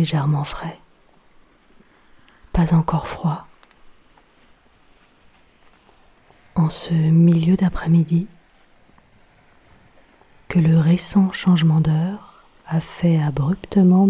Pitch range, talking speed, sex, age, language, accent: 155-180 Hz, 70 wpm, female, 30-49, French, French